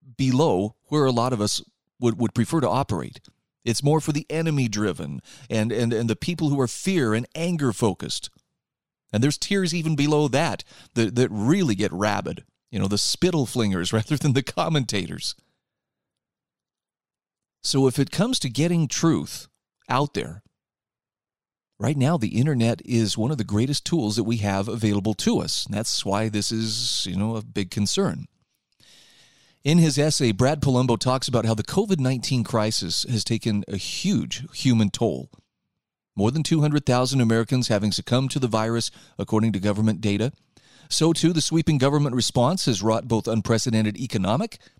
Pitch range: 110-150 Hz